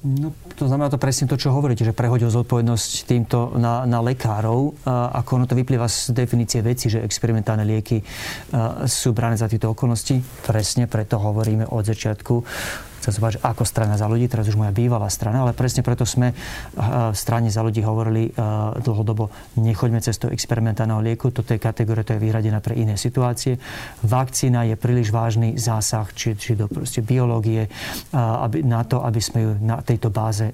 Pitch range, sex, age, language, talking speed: 110-125 Hz, male, 40-59, Slovak, 170 wpm